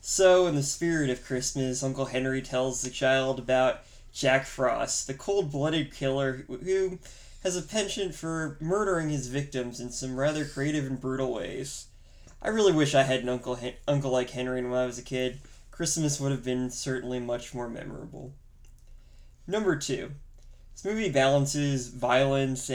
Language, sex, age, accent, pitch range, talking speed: English, male, 20-39, American, 125-145 Hz, 160 wpm